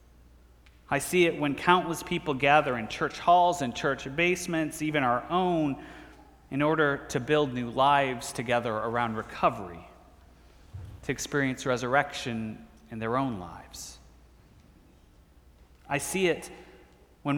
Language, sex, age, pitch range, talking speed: English, male, 30-49, 115-165 Hz, 125 wpm